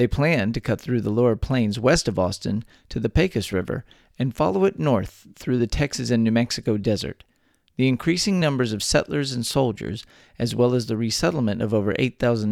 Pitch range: 110-140 Hz